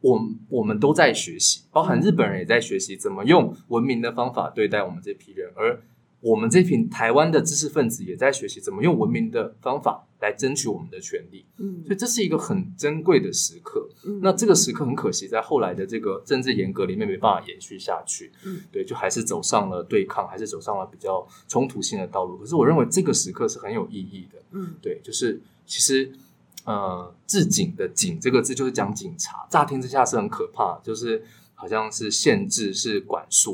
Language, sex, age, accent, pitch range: Chinese, male, 20-39, native, 150-225 Hz